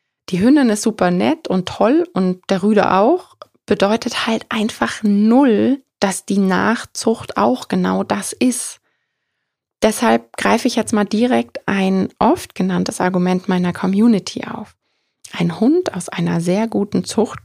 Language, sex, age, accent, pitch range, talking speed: German, female, 20-39, German, 185-230 Hz, 145 wpm